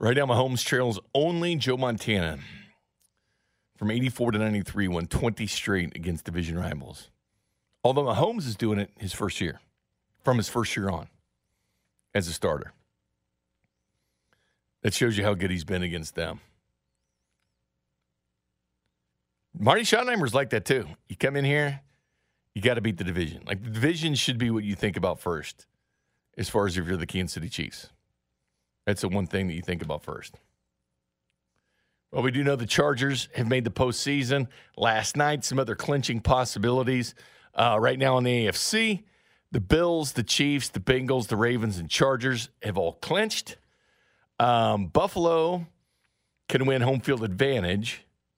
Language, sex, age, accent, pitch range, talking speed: English, male, 50-69, American, 85-130 Hz, 155 wpm